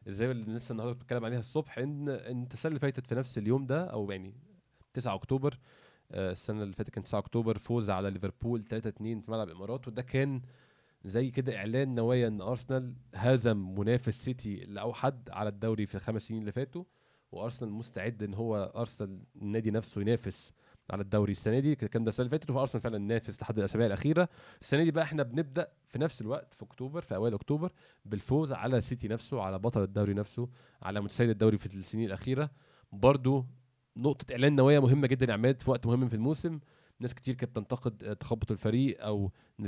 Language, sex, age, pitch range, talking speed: Arabic, male, 20-39, 105-130 Hz, 185 wpm